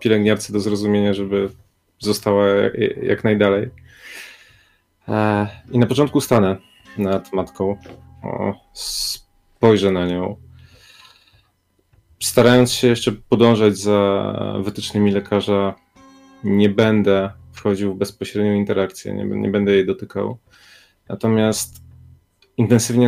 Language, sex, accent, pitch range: Polish, male, native, 100-115 Hz